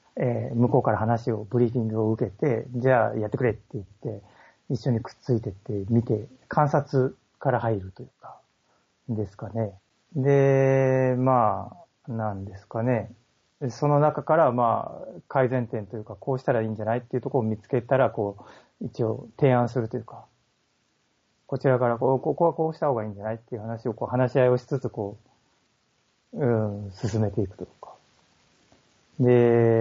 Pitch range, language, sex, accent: 110-130 Hz, Japanese, male, native